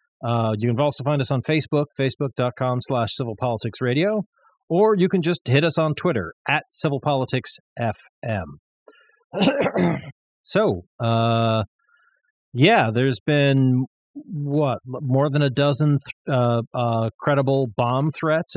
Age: 40-59